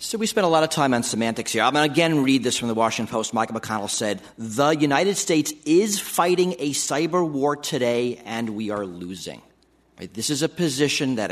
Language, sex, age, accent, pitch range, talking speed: English, male, 40-59, American, 115-180 Hz, 225 wpm